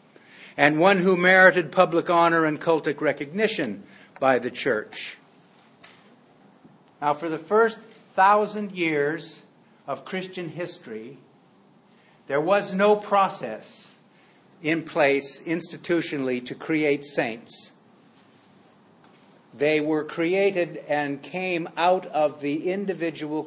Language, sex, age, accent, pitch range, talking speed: English, male, 60-79, American, 145-180 Hz, 100 wpm